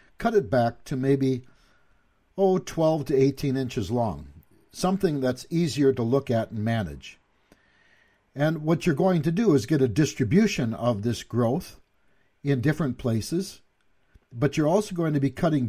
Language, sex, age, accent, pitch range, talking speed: English, male, 60-79, American, 110-150 Hz, 160 wpm